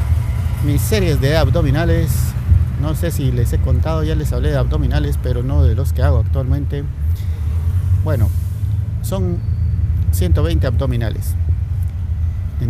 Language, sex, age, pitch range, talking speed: Spanish, male, 50-69, 85-105 Hz, 130 wpm